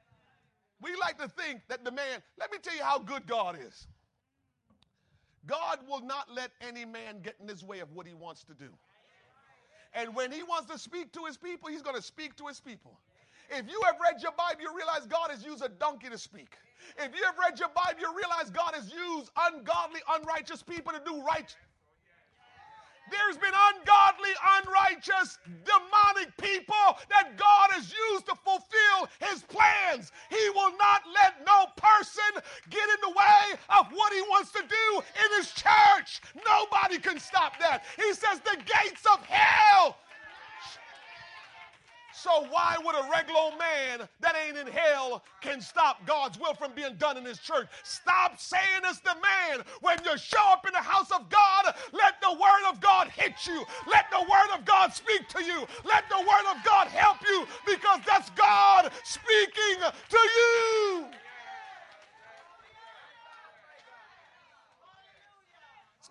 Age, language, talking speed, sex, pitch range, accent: 40-59, English, 170 wpm, male, 315-405 Hz, American